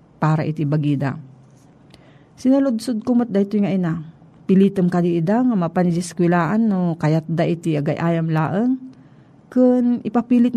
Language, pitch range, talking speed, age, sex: Filipino, 160-205 Hz, 125 wpm, 40-59, female